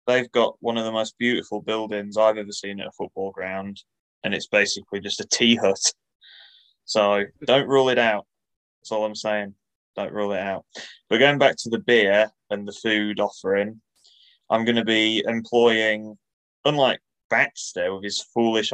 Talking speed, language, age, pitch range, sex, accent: 175 wpm, English, 20-39, 105-115 Hz, male, British